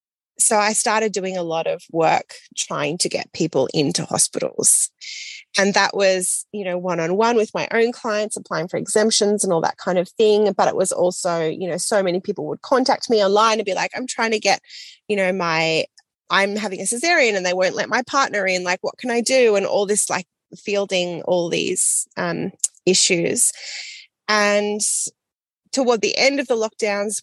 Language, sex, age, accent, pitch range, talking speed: English, female, 20-39, Australian, 180-220 Hz, 195 wpm